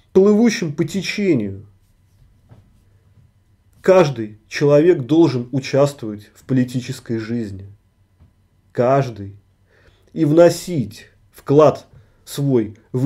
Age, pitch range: 30-49, 100-160 Hz